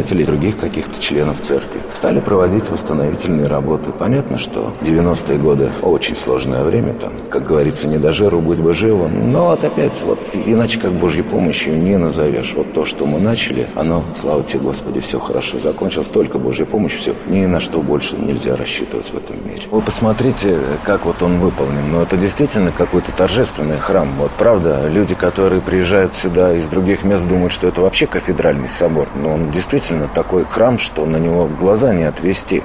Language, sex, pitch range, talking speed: Russian, male, 75-95 Hz, 180 wpm